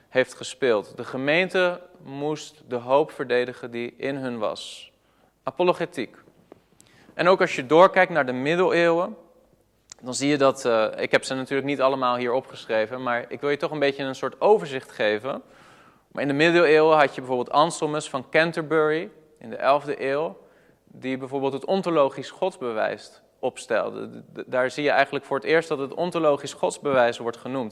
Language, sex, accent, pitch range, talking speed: Dutch, male, Dutch, 125-155 Hz, 170 wpm